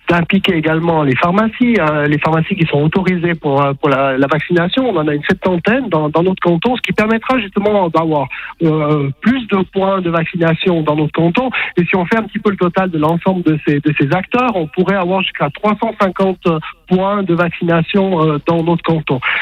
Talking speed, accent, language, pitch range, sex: 205 wpm, French, French, 160-200 Hz, male